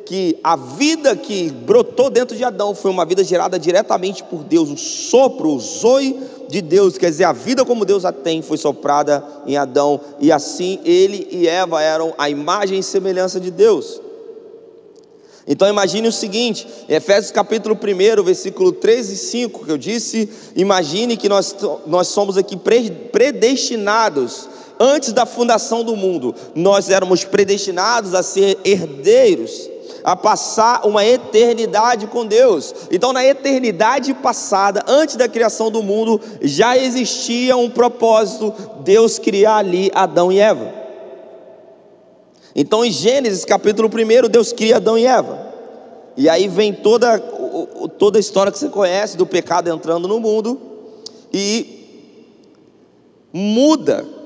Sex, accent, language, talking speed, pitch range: male, Brazilian, Portuguese, 145 wpm, 195-275 Hz